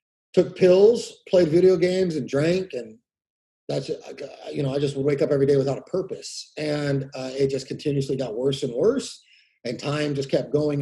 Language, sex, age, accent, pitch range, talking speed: English, male, 30-49, American, 135-165 Hz, 195 wpm